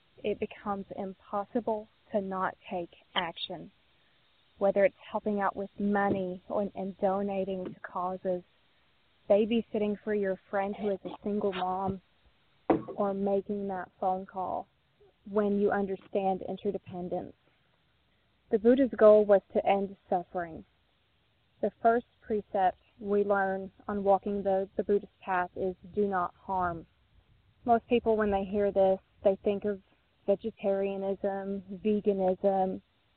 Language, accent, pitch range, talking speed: English, American, 185-210 Hz, 125 wpm